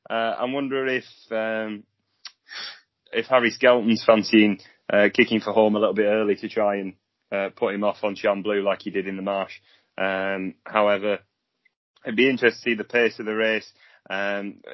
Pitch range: 110-130 Hz